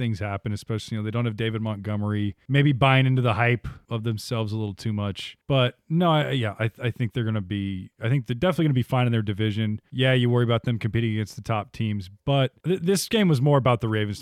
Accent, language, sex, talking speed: American, English, male, 255 wpm